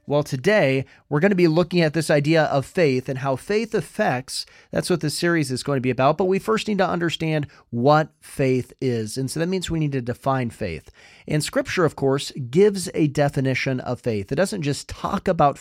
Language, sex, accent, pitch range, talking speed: English, male, American, 125-165 Hz, 210 wpm